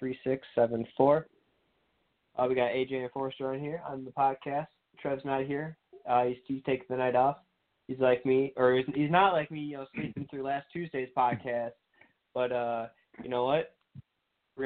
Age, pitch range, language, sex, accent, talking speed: 20-39, 130-150 Hz, English, male, American, 190 wpm